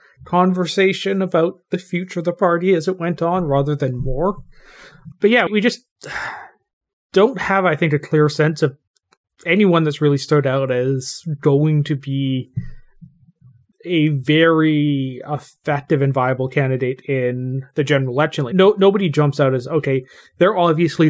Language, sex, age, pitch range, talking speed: English, male, 30-49, 135-170 Hz, 150 wpm